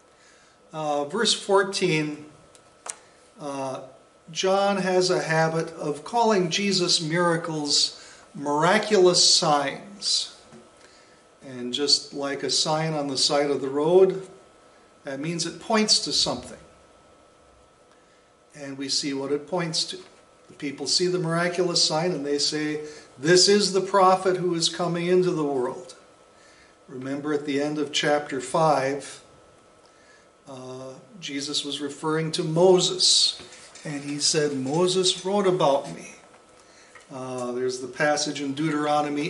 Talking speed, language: 125 wpm, English